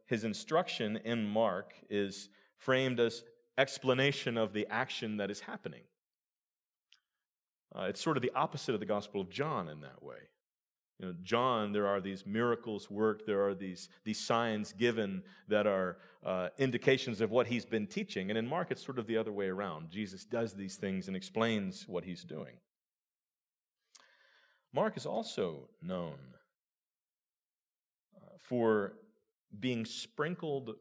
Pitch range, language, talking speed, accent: 95-125 Hz, English, 150 wpm, American